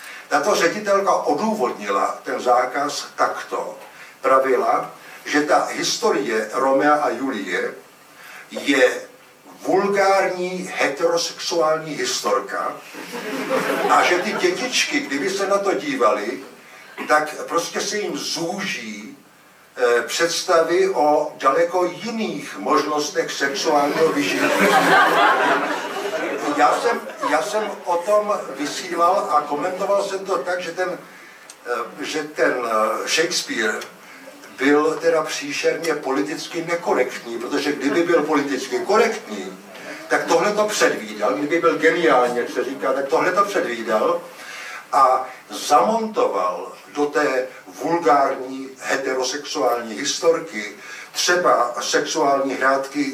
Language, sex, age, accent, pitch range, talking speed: Czech, male, 60-79, native, 135-185 Hz, 100 wpm